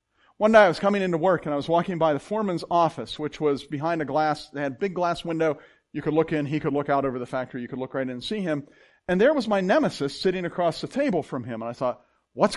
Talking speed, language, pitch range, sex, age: 285 wpm, English, 125-185 Hz, male, 40-59